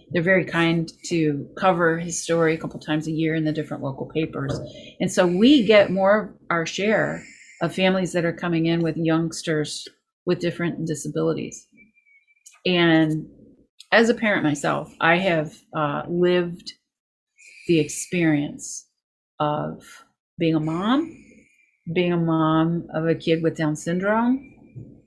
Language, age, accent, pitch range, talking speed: English, 40-59, American, 160-195 Hz, 145 wpm